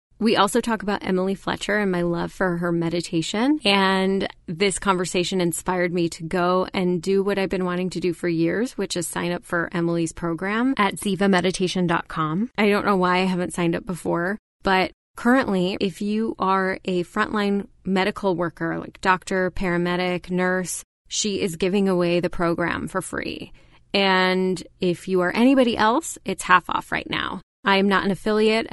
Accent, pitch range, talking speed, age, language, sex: American, 175-205 Hz, 175 wpm, 20-39, English, female